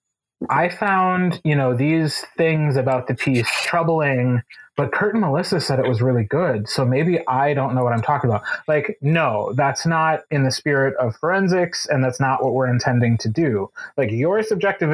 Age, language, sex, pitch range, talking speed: 30-49, English, male, 130-165 Hz, 195 wpm